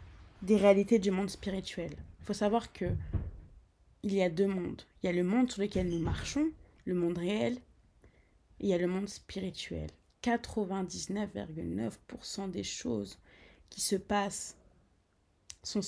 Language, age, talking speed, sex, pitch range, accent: French, 20-39, 145 wpm, female, 170-215 Hz, French